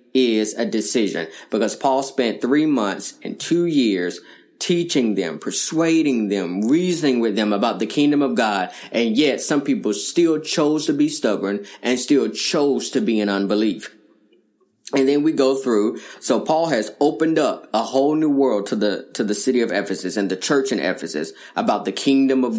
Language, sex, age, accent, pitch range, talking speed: English, male, 20-39, American, 115-145 Hz, 185 wpm